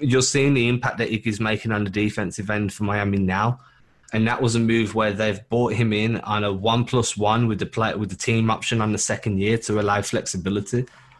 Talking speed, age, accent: 230 wpm, 20-39, British